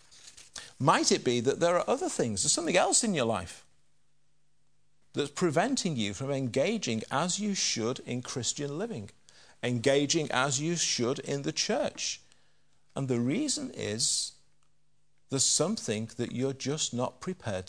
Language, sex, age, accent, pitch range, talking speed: English, male, 50-69, British, 120-150 Hz, 145 wpm